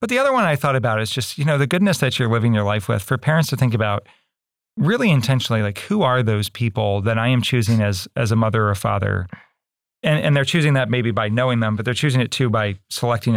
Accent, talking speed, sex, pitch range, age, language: American, 260 wpm, male, 105-130 Hz, 40-59, English